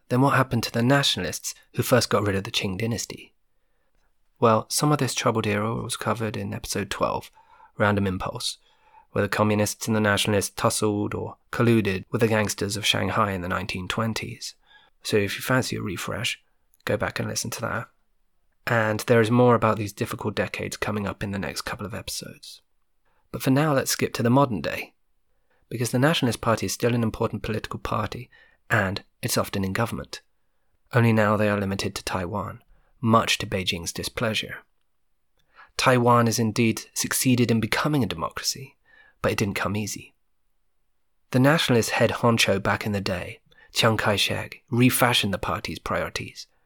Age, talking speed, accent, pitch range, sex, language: 30-49, 170 wpm, British, 105-120 Hz, male, English